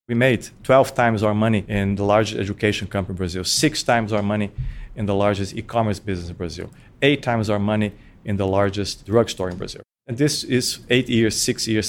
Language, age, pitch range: English, 40-59, 115-150 Hz